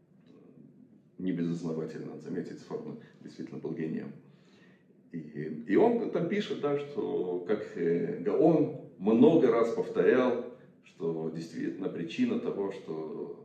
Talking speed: 105 wpm